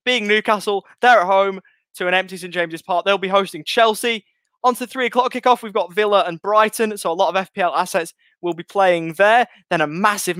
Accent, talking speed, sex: British, 220 wpm, male